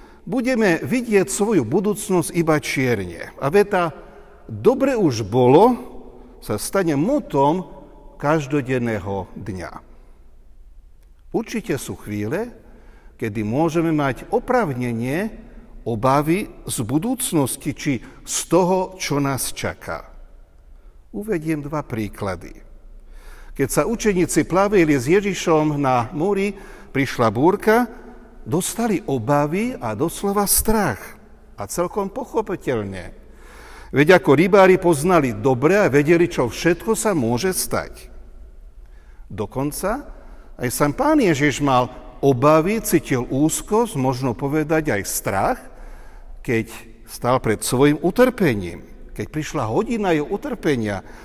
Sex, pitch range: male, 120-185 Hz